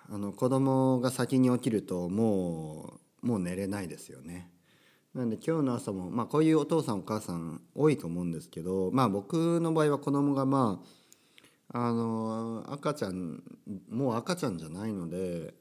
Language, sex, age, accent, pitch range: Japanese, male, 40-59, native, 95-135 Hz